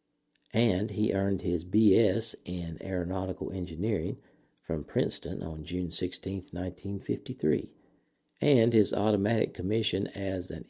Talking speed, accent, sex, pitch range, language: 110 wpm, American, male, 90-115 Hz, English